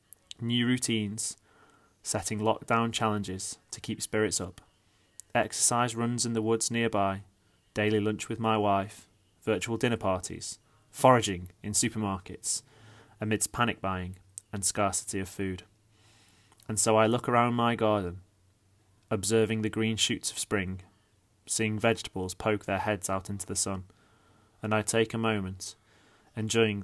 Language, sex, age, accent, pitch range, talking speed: English, male, 30-49, British, 100-115 Hz, 135 wpm